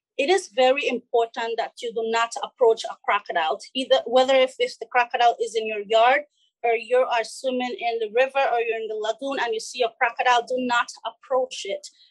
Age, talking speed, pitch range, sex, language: 30-49, 210 wpm, 240-300 Hz, female, English